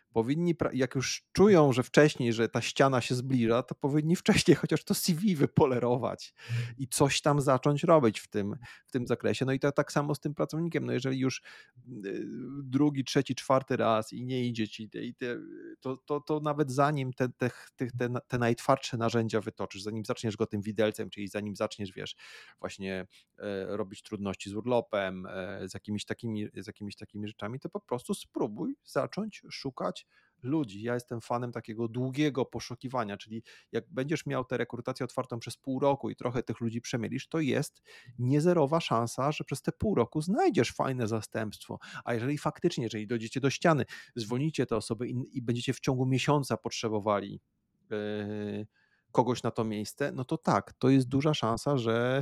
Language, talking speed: Polish, 175 wpm